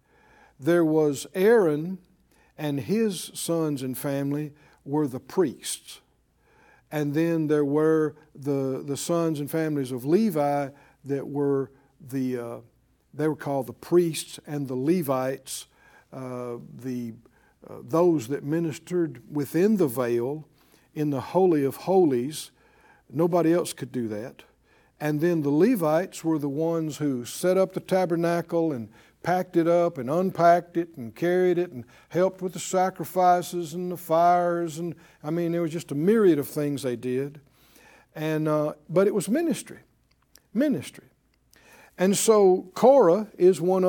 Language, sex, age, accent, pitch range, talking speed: English, male, 60-79, American, 145-185 Hz, 145 wpm